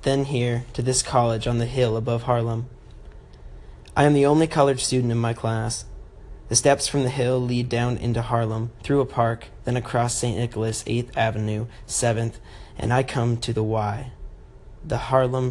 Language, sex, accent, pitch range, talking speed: English, male, American, 115-145 Hz, 180 wpm